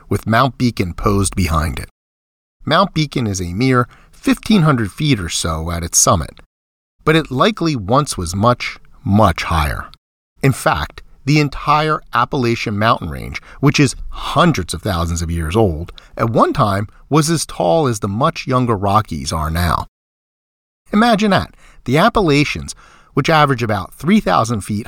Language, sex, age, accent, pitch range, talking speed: English, male, 40-59, American, 90-140 Hz, 150 wpm